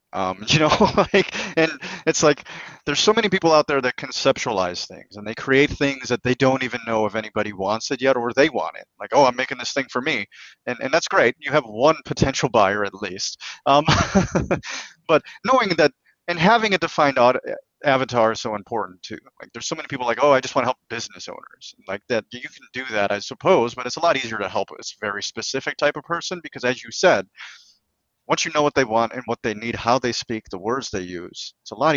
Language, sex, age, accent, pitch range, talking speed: English, male, 30-49, American, 110-150 Hz, 235 wpm